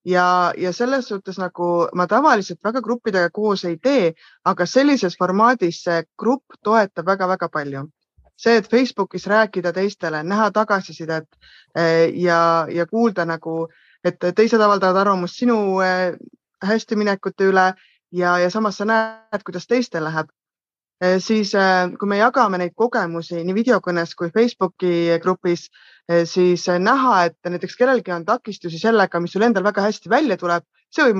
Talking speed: 145 wpm